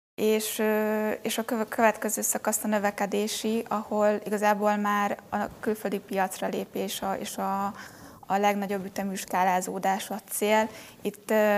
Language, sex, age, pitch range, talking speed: Hungarian, female, 20-39, 205-235 Hz, 120 wpm